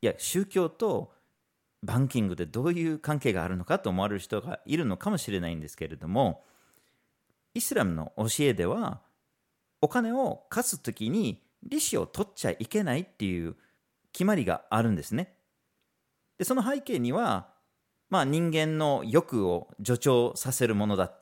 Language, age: Japanese, 40-59